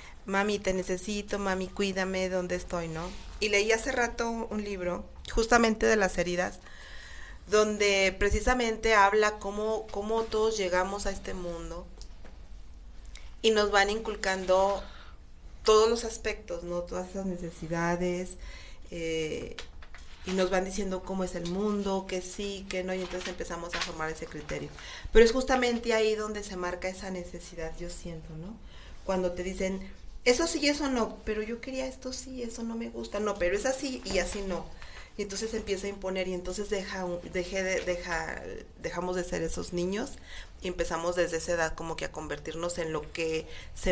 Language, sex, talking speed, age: Spanish, female, 170 wpm, 40-59